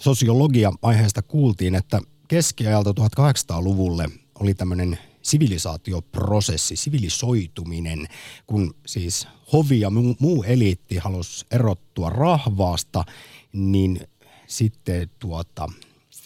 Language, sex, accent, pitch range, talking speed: Finnish, male, native, 90-120 Hz, 80 wpm